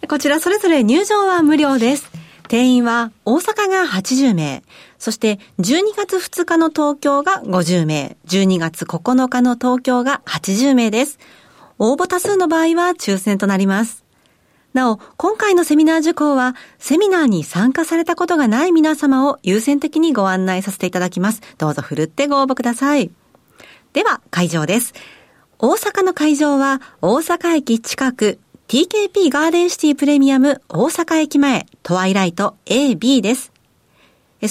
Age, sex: 40-59, female